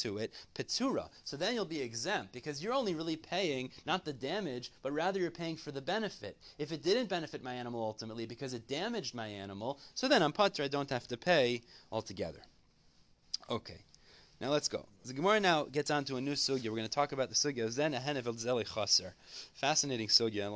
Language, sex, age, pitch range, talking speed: English, male, 30-49, 115-155 Hz, 205 wpm